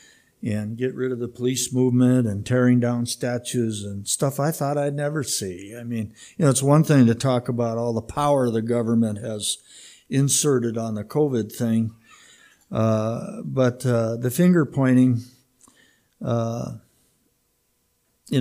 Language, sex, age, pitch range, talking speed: English, male, 60-79, 115-135 Hz, 150 wpm